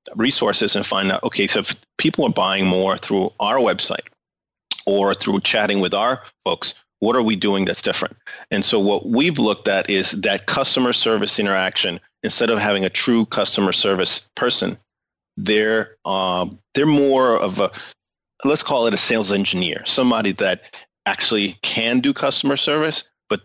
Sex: male